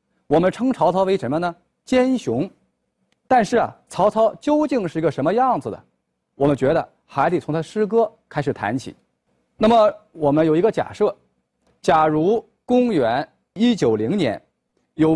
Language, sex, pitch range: Chinese, male, 150-240 Hz